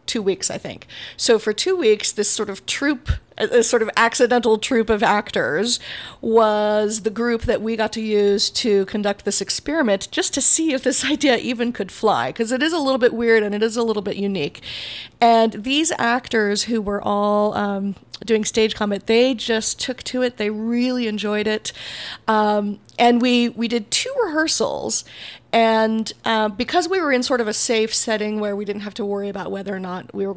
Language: English